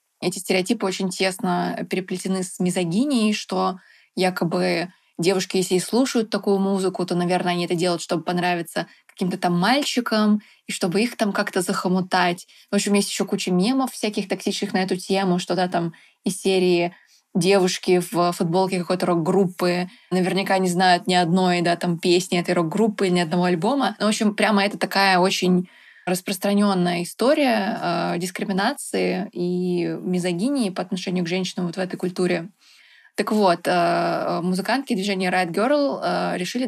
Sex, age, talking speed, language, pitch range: female, 20-39, 150 wpm, Russian, 180-210 Hz